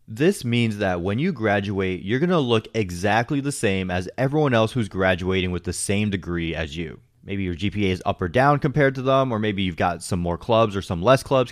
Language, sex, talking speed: English, male, 235 wpm